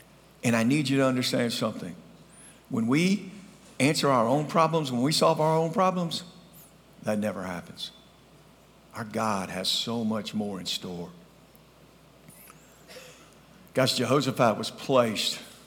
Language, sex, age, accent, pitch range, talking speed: English, male, 50-69, American, 110-155 Hz, 130 wpm